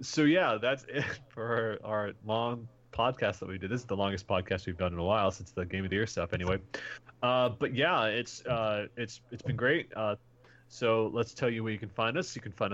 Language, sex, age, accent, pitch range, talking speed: English, male, 30-49, American, 105-125 Hz, 240 wpm